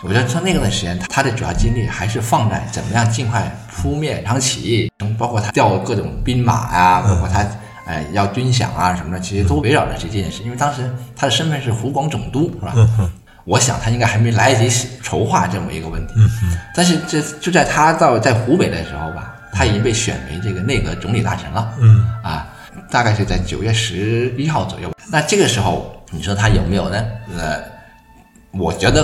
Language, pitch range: Chinese, 100-125 Hz